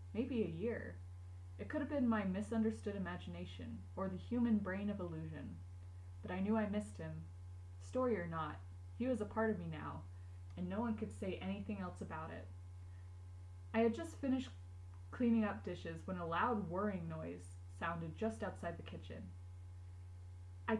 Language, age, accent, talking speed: English, 20-39, American, 170 wpm